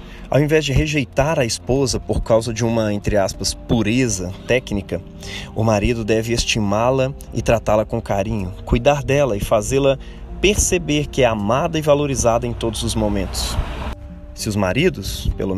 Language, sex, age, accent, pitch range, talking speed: Portuguese, male, 20-39, Brazilian, 100-130 Hz, 155 wpm